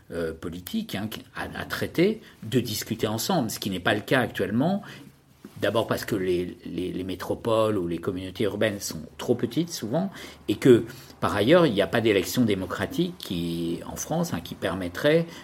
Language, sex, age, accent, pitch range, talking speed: French, male, 50-69, French, 95-135 Hz, 180 wpm